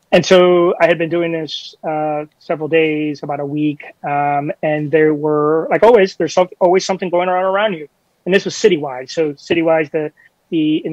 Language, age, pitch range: English, 30-49, 145-165 Hz